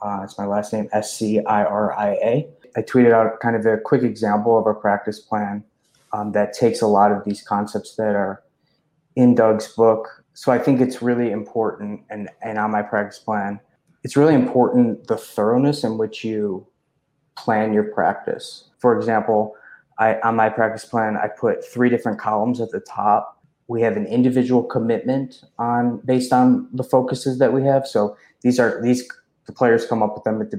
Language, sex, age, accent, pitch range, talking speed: English, male, 20-39, American, 105-125 Hz, 185 wpm